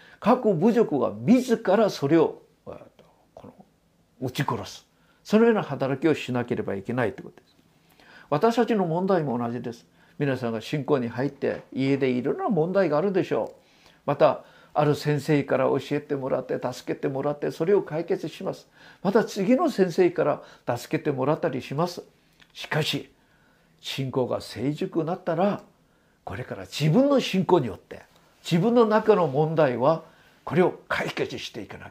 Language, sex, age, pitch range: Japanese, male, 50-69, 140-215 Hz